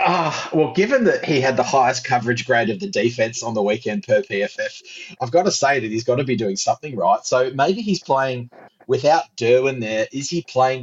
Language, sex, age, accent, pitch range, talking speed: English, male, 30-49, Australian, 115-150 Hz, 220 wpm